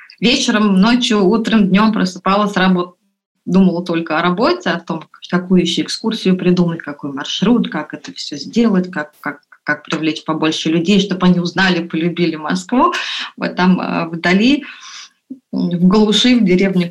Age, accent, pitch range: 20-39, native, 175-220 Hz